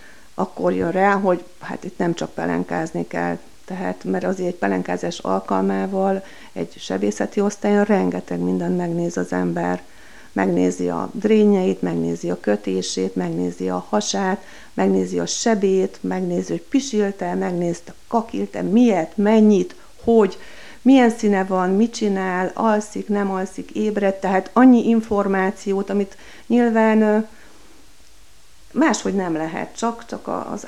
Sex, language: female, Hungarian